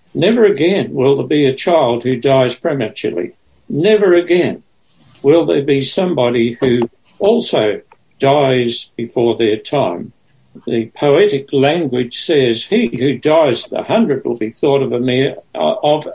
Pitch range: 125-170 Hz